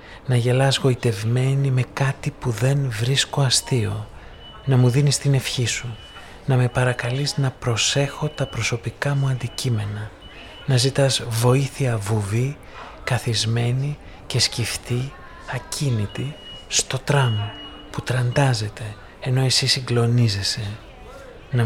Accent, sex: native, male